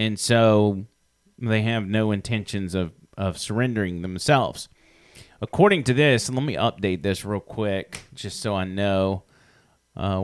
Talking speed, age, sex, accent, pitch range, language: 145 wpm, 30-49, male, American, 100-125 Hz, English